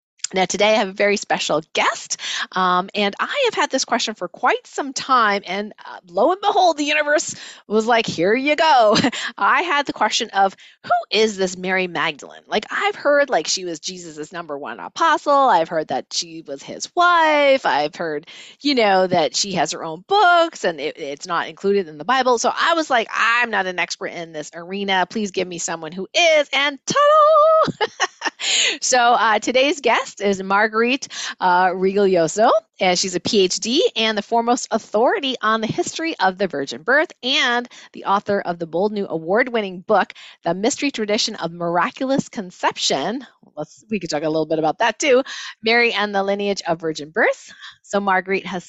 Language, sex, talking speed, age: English, female, 190 wpm, 30-49